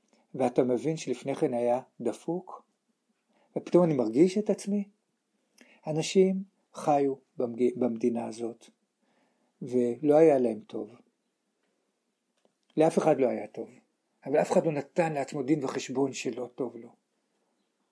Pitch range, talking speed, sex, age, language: 160-235 Hz, 120 wpm, male, 60-79, Hebrew